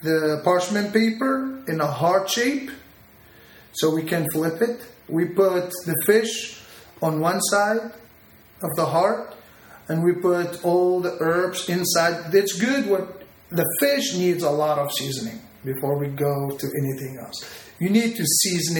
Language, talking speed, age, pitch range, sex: English, 155 wpm, 30-49, 155-180 Hz, male